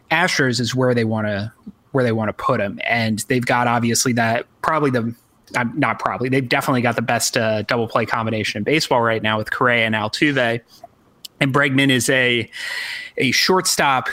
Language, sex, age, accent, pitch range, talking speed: English, male, 30-49, American, 115-130 Hz, 185 wpm